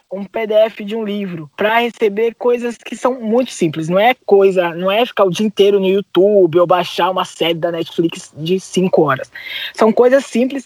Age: 20-39